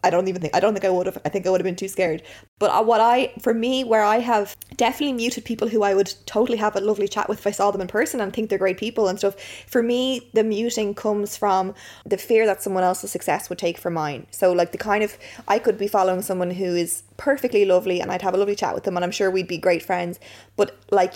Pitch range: 185-220 Hz